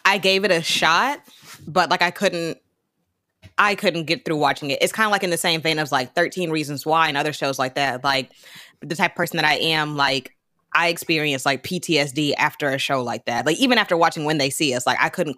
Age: 20-39